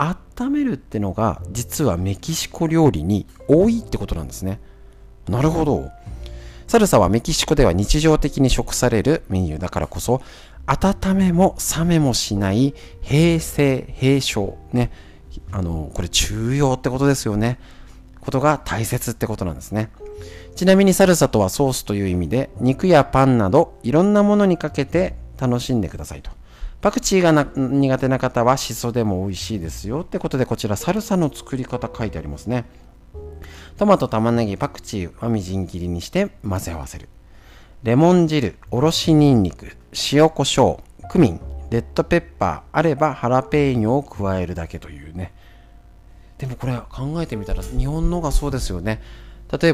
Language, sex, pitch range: Japanese, male, 90-145 Hz